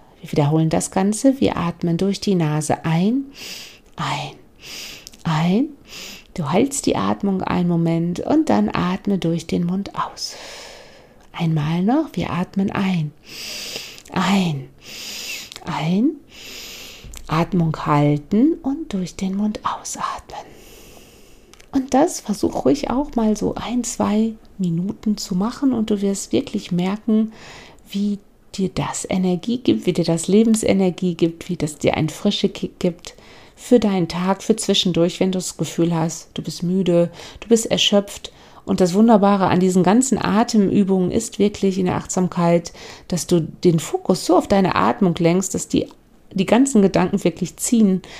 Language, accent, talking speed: German, German, 145 wpm